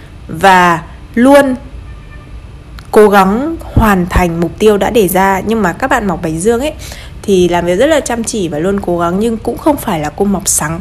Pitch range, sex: 175-230 Hz, female